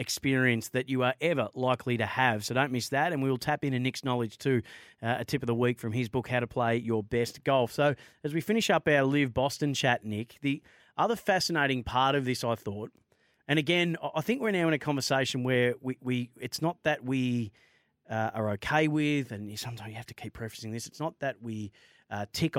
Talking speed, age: 230 wpm, 30-49